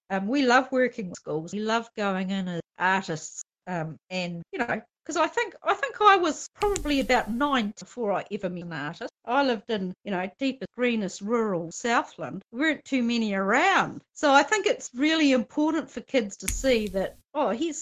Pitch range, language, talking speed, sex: 195-270 Hz, English, 200 wpm, female